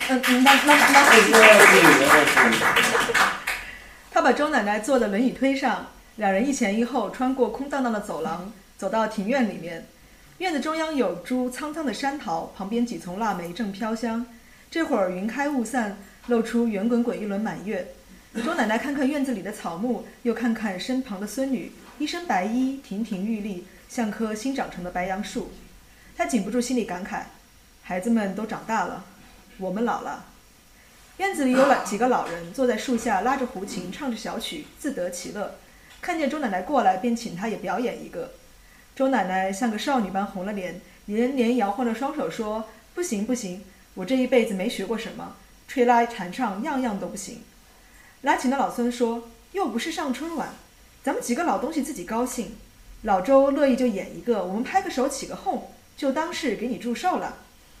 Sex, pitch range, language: female, 210-260 Hz, Italian